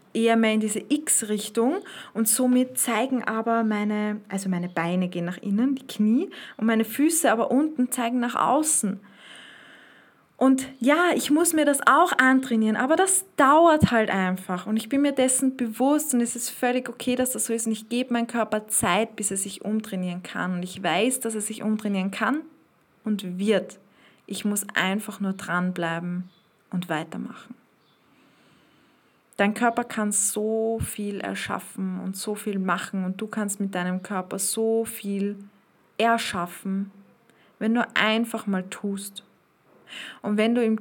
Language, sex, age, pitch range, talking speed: German, female, 20-39, 195-245 Hz, 160 wpm